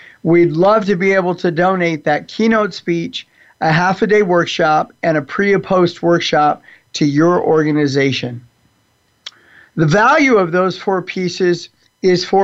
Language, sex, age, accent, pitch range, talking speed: English, male, 50-69, American, 160-205 Hz, 135 wpm